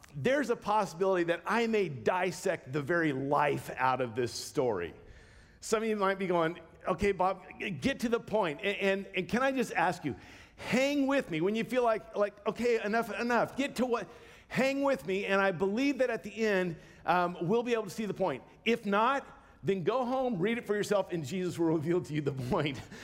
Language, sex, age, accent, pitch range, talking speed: English, male, 50-69, American, 175-225 Hz, 215 wpm